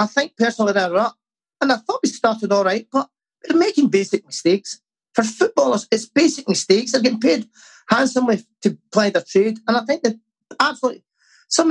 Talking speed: 190 wpm